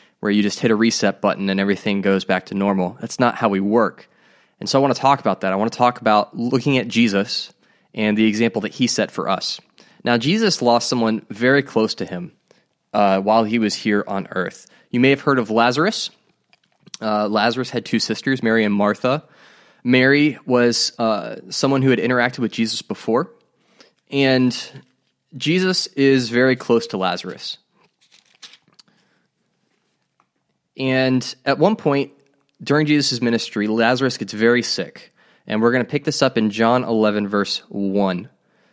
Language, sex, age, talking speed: English, male, 20-39, 170 wpm